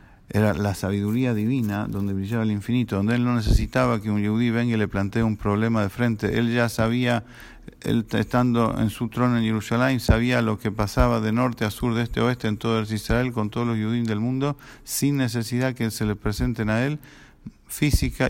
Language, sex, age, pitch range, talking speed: English, male, 50-69, 100-120 Hz, 210 wpm